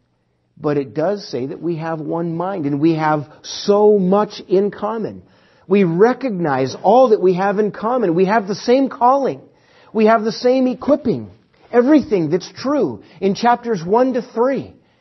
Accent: American